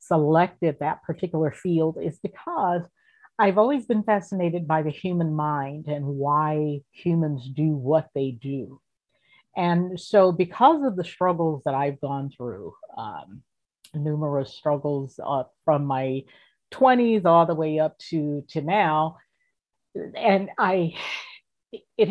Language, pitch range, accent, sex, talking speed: English, 150-180 Hz, American, female, 130 wpm